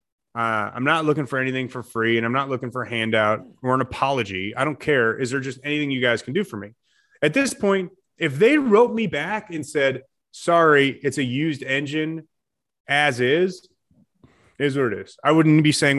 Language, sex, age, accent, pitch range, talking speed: English, male, 30-49, American, 125-160 Hz, 210 wpm